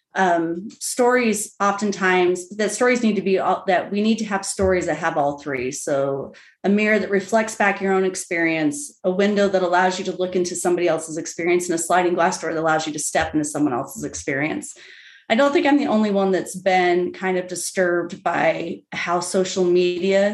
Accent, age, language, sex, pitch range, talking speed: American, 30-49, English, female, 170-200 Hz, 200 wpm